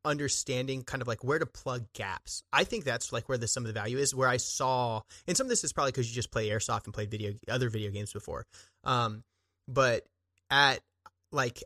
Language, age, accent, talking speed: English, 30-49, American, 225 wpm